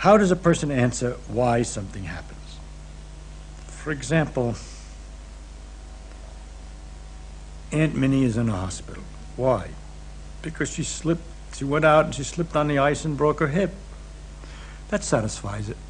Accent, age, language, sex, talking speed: American, 70-89, English, male, 135 wpm